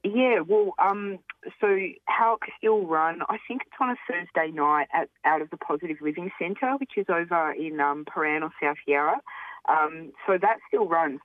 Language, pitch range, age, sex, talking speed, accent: English, 130-160 Hz, 20-39, female, 195 wpm, Australian